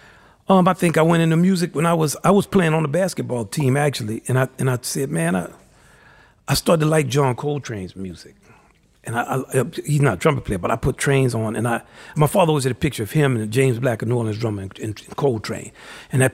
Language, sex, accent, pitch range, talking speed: English, male, American, 110-145 Hz, 250 wpm